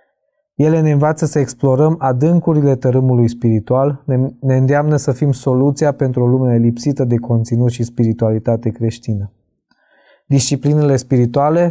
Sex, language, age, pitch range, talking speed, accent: male, Romanian, 20-39, 120-145 Hz, 130 wpm, native